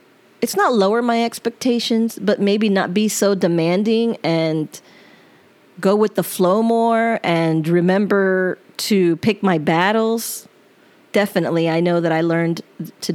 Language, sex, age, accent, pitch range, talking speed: English, female, 30-49, American, 170-210 Hz, 135 wpm